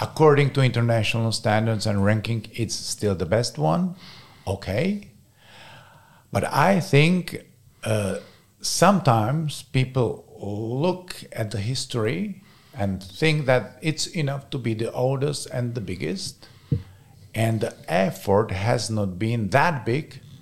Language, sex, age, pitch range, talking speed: Czech, male, 50-69, 110-140 Hz, 125 wpm